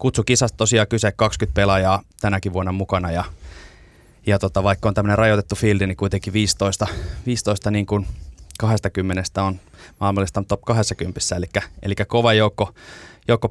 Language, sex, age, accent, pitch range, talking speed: Finnish, male, 20-39, native, 95-110 Hz, 130 wpm